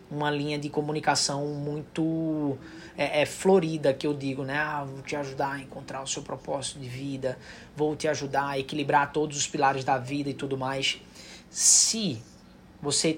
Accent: Brazilian